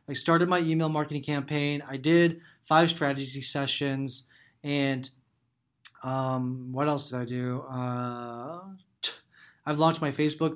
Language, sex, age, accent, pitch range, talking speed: English, male, 20-39, American, 135-160 Hz, 130 wpm